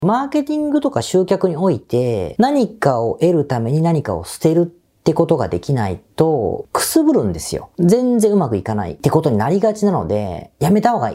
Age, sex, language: 40-59, female, Japanese